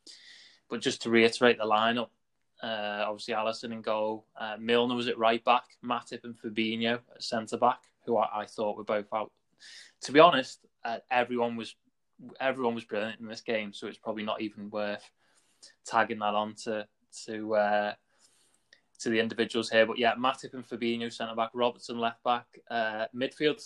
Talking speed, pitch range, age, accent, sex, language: 180 wpm, 110-120 Hz, 20-39, British, male, English